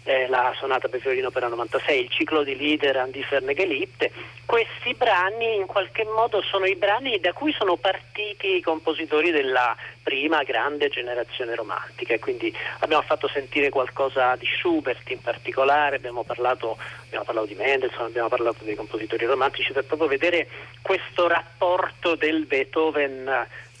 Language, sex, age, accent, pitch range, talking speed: Italian, male, 40-59, native, 140-205 Hz, 155 wpm